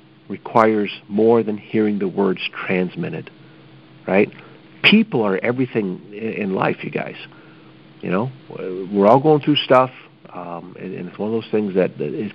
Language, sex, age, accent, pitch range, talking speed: English, male, 50-69, American, 95-135 Hz, 155 wpm